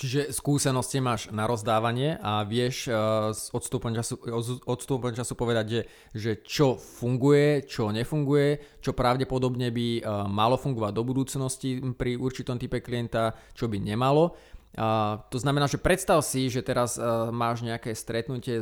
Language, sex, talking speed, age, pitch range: Slovak, male, 135 wpm, 20-39, 115-135 Hz